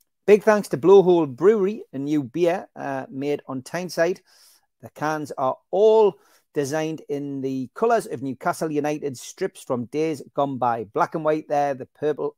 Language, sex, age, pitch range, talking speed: English, male, 40-59, 135-190 Hz, 165 wpm